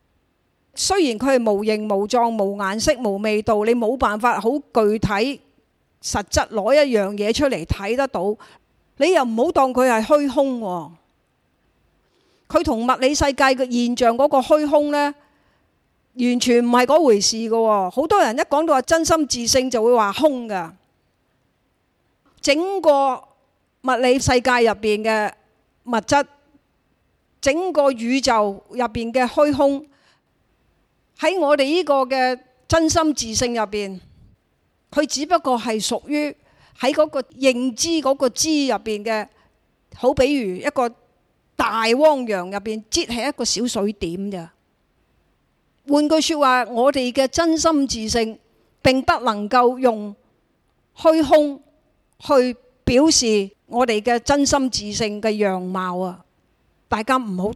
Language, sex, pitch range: Chinese, female, 220-285 Hz